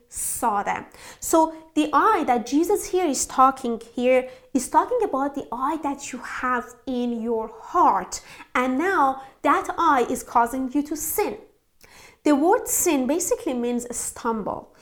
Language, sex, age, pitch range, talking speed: English, female, 30-49, 240-310 Hz, 155 wpm